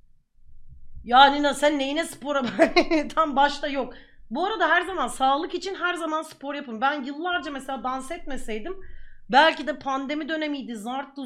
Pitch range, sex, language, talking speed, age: 225-320 Hz, female, Turkish, 150 wpm, 30-49